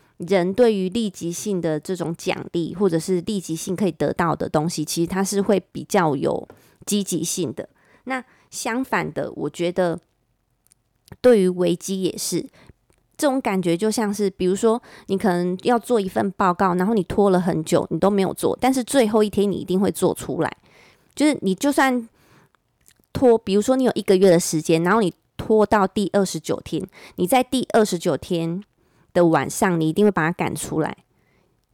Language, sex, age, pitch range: Chinese, female, 20-39, 175-220 Hz